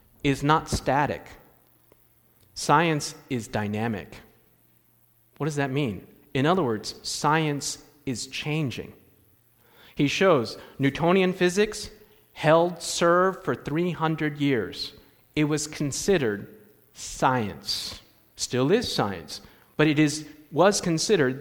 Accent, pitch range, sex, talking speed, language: American, 145-210 Hz, male, 105 wpm, English